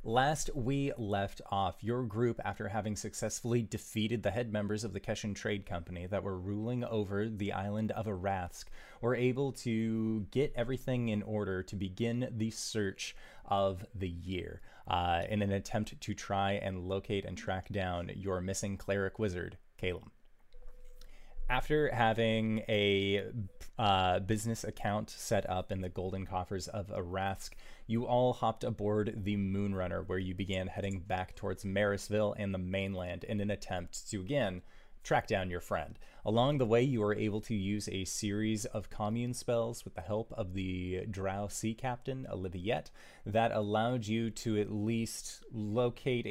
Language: English